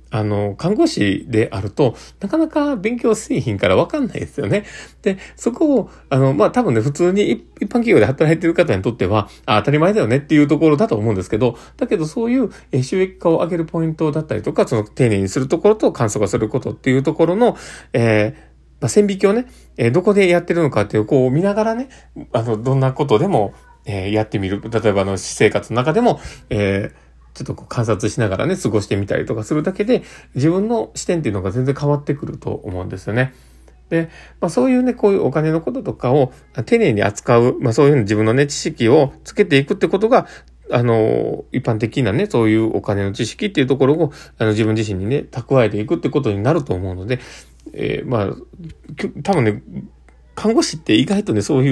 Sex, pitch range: male, 110-175 Hz